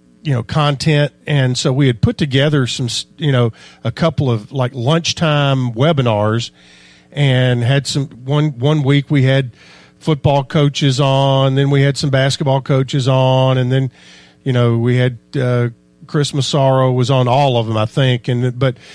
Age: 50-69